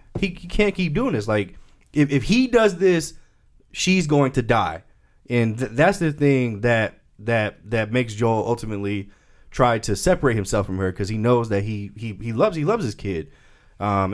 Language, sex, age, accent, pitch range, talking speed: English, male, 20-39, American, 100-130 Hz, 190 wpm